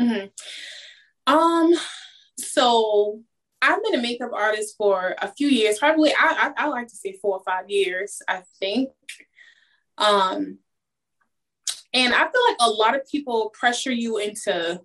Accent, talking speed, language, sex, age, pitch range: American, 150 wpm, English, female, 20-39, 210-295 Hz